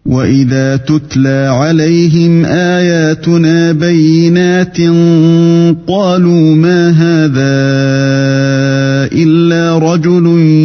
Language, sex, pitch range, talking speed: Arabic, male, 135-170 Hz, 55 wpm